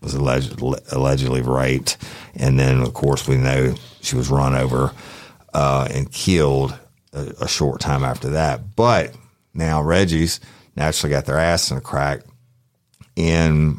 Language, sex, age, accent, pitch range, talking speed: English, male, 50-69, American, 70-80 Hz, 150 wpm